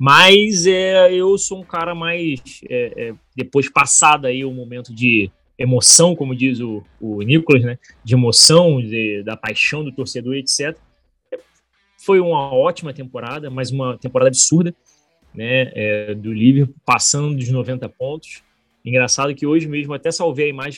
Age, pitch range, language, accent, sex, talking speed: 20-39, 125-155 Hz, Portuguese, Brazilian, male, 155 wpm